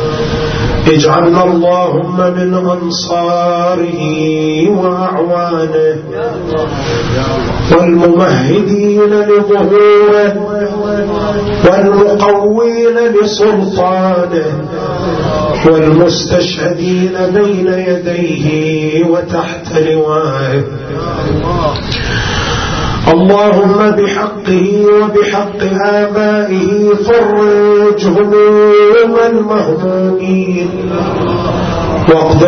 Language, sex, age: Arabic, male, 30-49